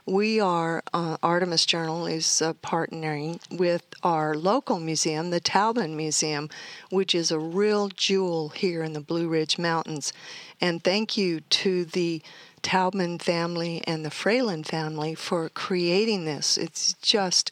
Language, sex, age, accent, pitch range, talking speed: English, female, 50-69, American, 160-190 Hz, 145 wpm